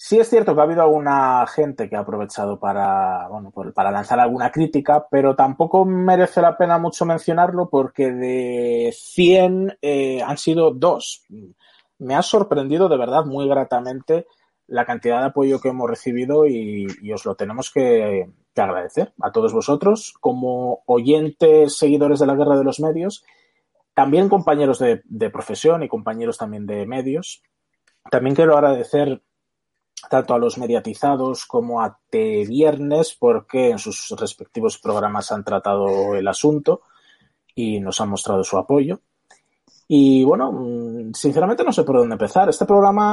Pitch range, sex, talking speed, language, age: 125-175 Hz, male, 155 wpm, Spanish, 30-49